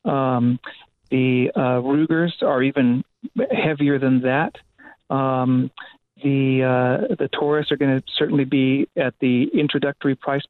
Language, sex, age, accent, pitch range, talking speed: English, male, 40-59, American, 125-150 Hz, 130 wpm